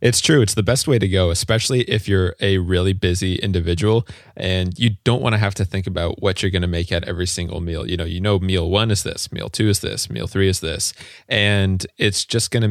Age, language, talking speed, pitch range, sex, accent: 20-39, English, 255 wpm, 85-105 Hz, male, American